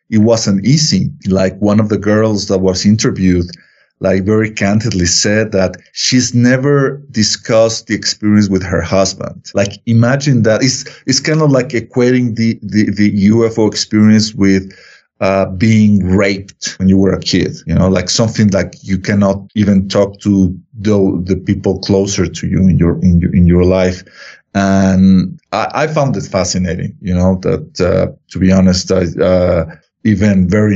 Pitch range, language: 95-110 Hz, English